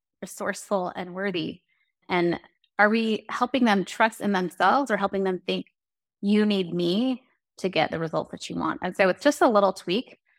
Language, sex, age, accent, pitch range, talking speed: English, female, 30-49, American, 180-225 Hz, 185 wpm